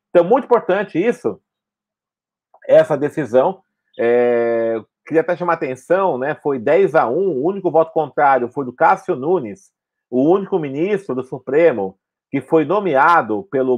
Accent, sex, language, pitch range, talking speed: Brazilian, male, Portuguese, 130-175 Hz, 150 wpm